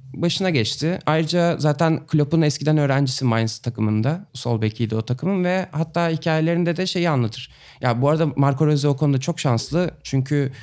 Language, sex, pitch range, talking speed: Turkish, male, 130-170 Hz, 165 wpm